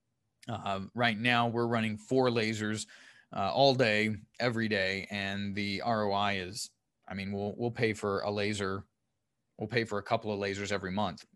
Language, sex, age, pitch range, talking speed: English, male, 20-39, 110-130 Hz, 175 wpm